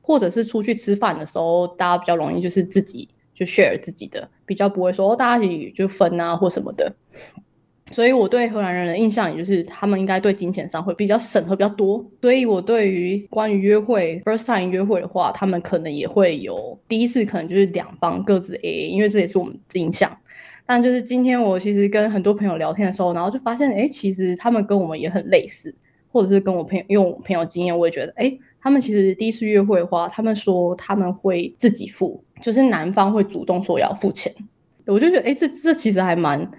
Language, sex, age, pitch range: Chinese, female, 10-29, 180-225 Hz